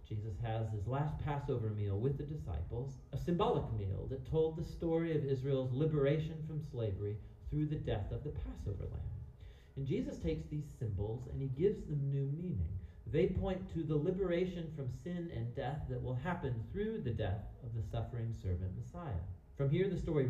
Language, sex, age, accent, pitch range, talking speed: English, male, 40-59, American, 100-150 Hz, 185 wpm